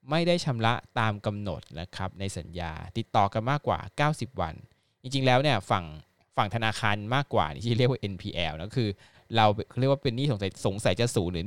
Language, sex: Thai, male